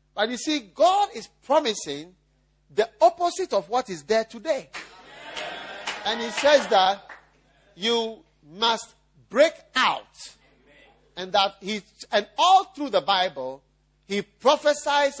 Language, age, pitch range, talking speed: English, 50-69, 155-235 Hz, 115 wpm